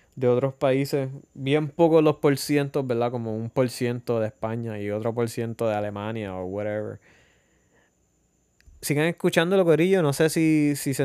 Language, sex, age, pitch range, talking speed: English, male, 20-39, 115-145 Hz, 170 wpm